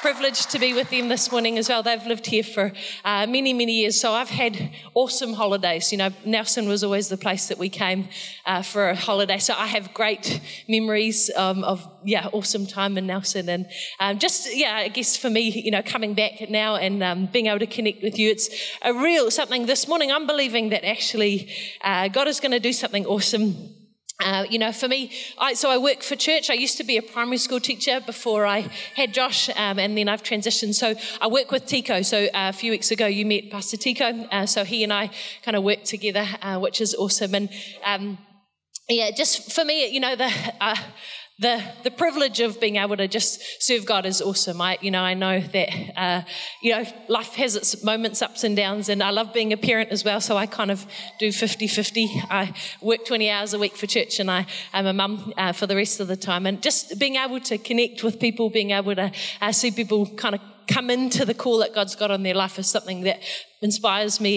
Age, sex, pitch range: 30-49, female, 200-235 Hz